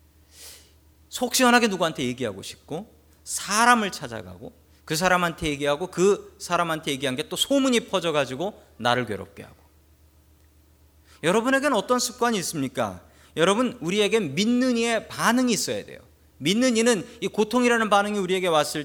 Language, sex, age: Korean, male, 40-59